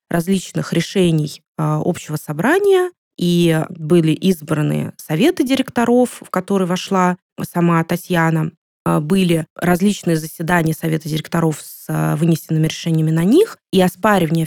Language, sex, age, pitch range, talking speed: Russian, female, 20-39, 165-200 Hz, 110 wpm